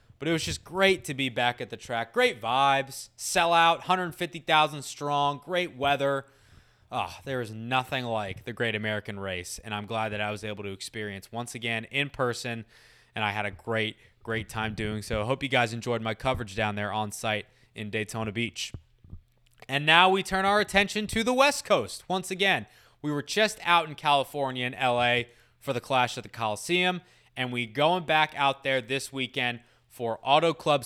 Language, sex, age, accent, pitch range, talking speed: English, male, 20-39, American, 115-160 Hz, 195 wpm